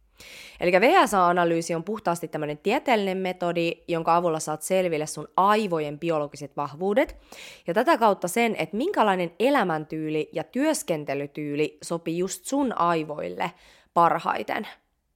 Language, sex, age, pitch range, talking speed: English, female, 20-39, 155-200 Hz, 115 wpm